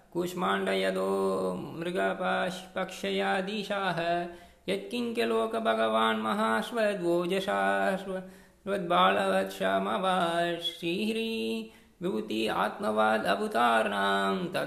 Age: 20-39